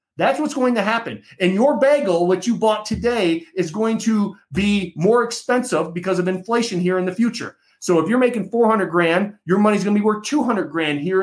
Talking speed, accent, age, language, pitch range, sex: 225 wpm, American, 40-59, English, 170-225 Hz, male